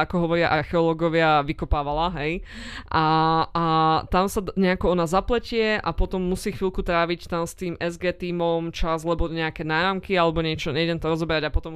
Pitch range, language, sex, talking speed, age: 170-200 Hz, Slovak, female, 170 wpm, 20-39